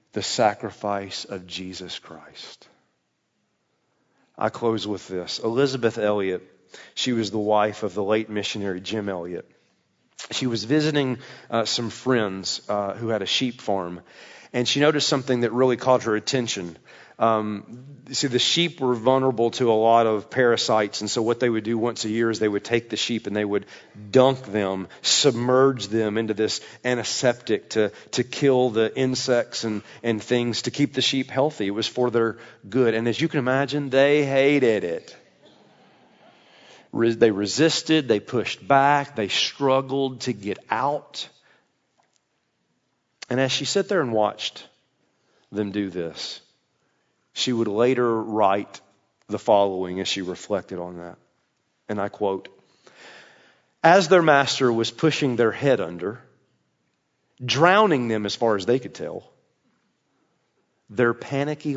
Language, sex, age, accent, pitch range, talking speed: English, male, 40-59, American, 105-130 Hz, 150 wpm